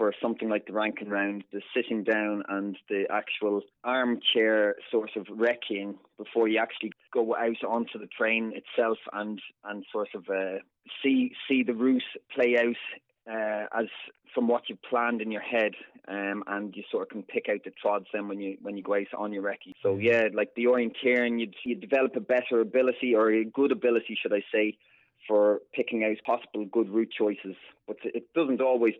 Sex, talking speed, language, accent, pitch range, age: male, 195 wpm, English, Irish, 100-115 Hz, 20-39